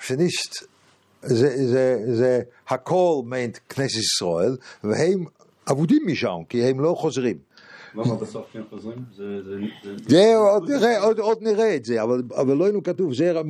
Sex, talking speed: male, 120 wpm